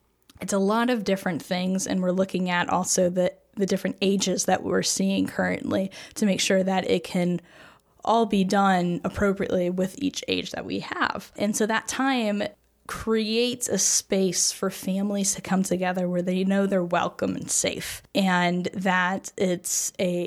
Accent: American